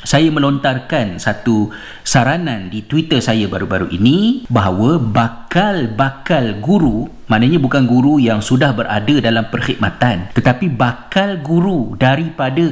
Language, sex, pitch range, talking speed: Malay, male, 115-160 Hz, 115 wpm